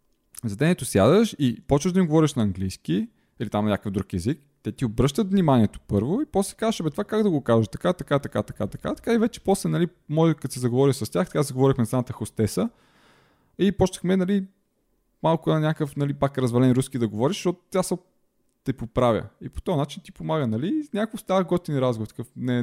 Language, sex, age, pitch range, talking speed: Bulgarian, male, 20-39, 115-165 Hz, 205 wpm